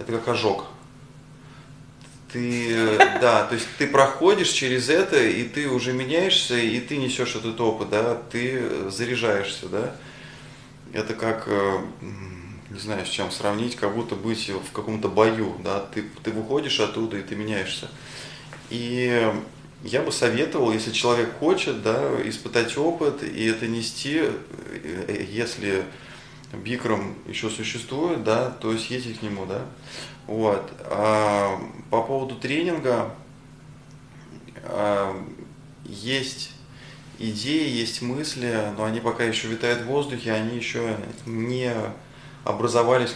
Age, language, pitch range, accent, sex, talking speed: 20-39, Russian, 110-130 Hz, native, male, 120 wpm